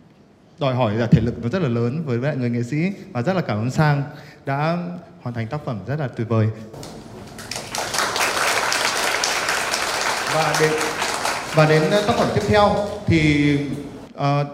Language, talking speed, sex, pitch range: Vietnamese, 160 wpm, male, 135-180 Hz